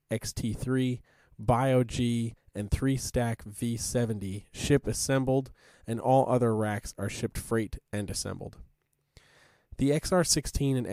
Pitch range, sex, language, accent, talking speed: 105-130 Hz, male, English, American, 105 wpm